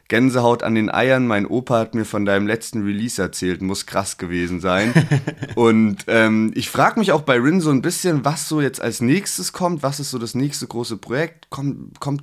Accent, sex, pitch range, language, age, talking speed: German, male, 105-140 Hz, German, 30-49, 210 wpm